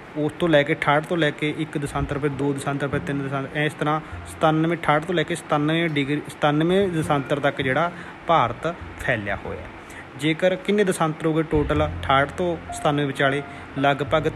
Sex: male